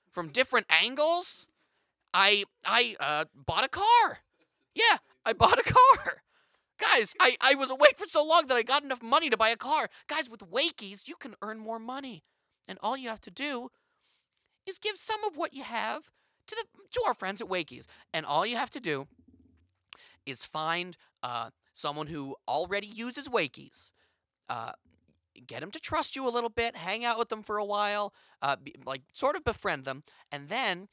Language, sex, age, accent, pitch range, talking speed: English, male, 30-49, American, 175-285 Hz, 190 wpm